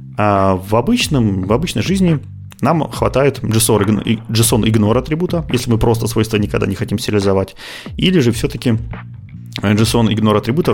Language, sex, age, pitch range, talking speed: Russian, male, 30-49, 100-120 Hz, 105 wpm